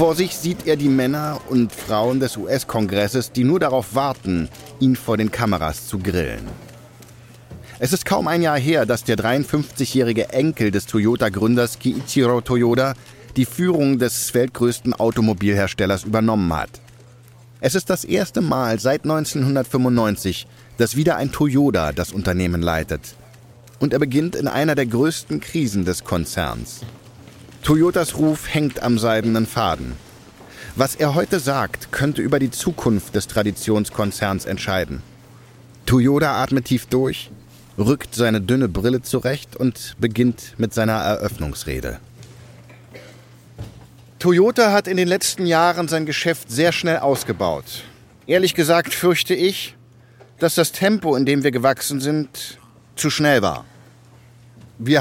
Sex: male